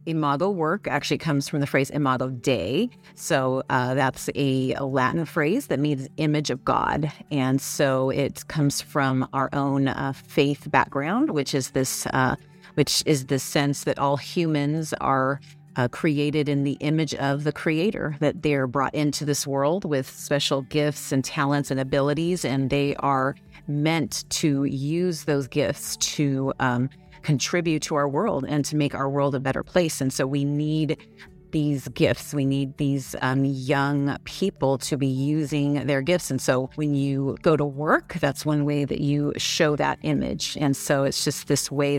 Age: 30-49